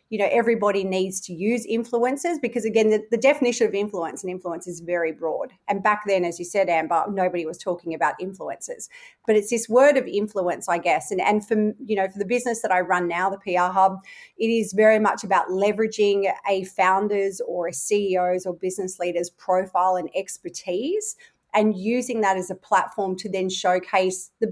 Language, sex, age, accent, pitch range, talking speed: English, female, 30-49, Australian, 180-220 Hz, 200 wpm